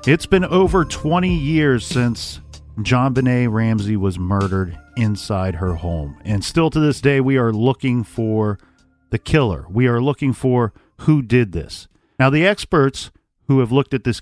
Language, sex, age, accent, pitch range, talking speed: English, male, 40-59, American, 110-145 Hz, 170 wpm